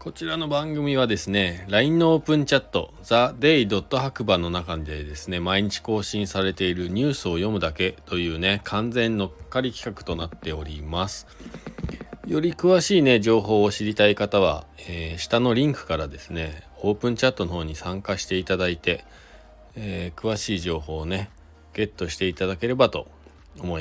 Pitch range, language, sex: 80-120 Hz, Japanese, male